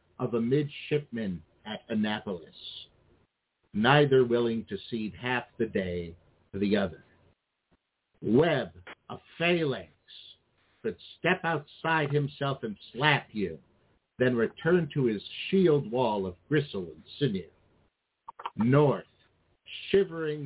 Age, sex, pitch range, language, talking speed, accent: 60-79, male, 115-160 Hz, English, 110 wpm, American